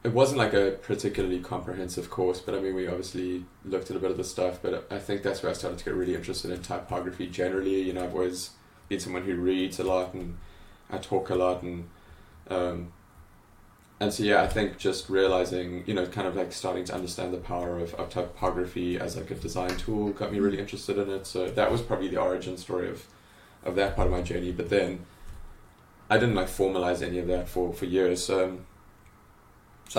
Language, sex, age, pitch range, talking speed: English, male, 20-39, 90-95 Hz, 220 wpm